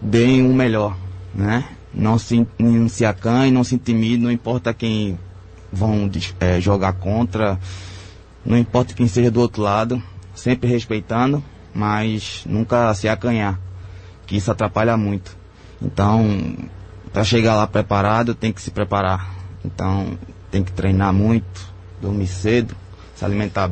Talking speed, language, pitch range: 140 wpm, Portuguese, 95-115 Hz